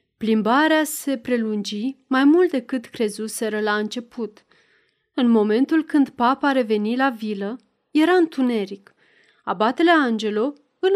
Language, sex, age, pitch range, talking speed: Romanian, female, 30-49, 220-290 Hz, 115 wpm